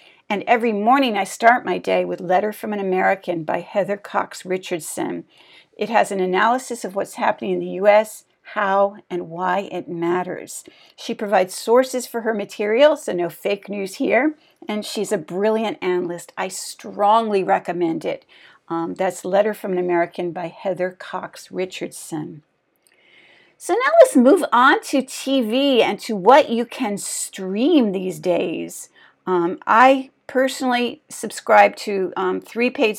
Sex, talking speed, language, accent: female, 150 wpm, English, American